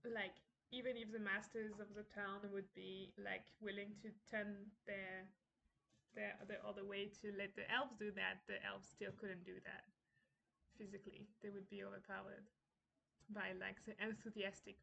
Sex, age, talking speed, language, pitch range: female, 20-39, 160 wpm, English, 200-225 Hz